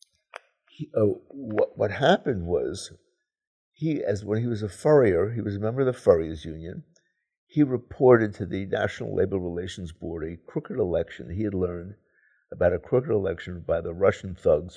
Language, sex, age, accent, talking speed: English, male, 60-79, American, 170 wpm